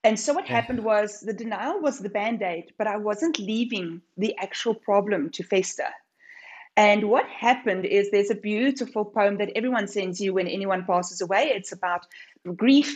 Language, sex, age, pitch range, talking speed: English, female, 30-49, 195-240 Hz, 175 wpm